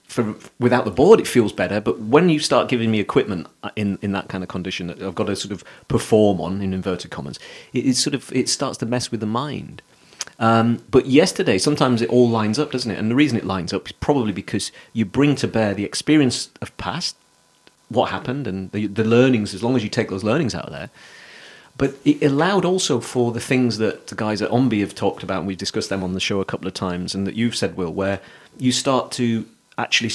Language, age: English, 40-59